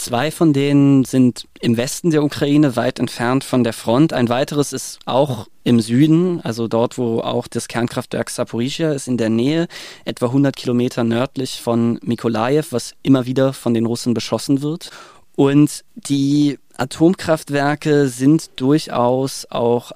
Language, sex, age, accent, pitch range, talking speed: German, male, 20-39, German, 120-145 Hz, 150 wpm